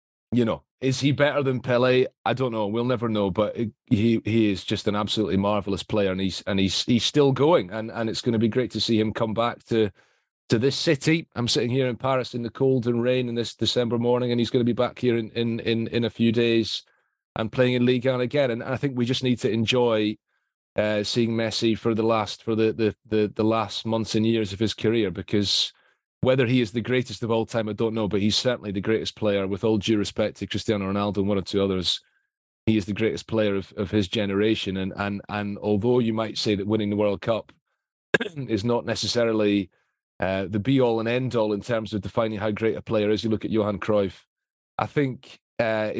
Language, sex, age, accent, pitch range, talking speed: English, male, 30-49, British, 105-120 Hz, 235 wpm